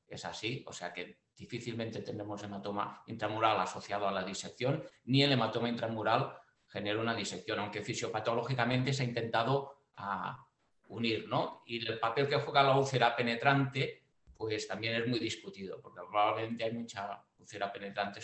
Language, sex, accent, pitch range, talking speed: Spanish, male, Spanish, 110-135 Hz, 155 wpm